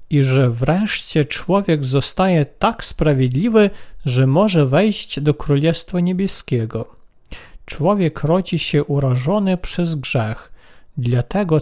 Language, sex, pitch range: Polish, male, 140-190 Hz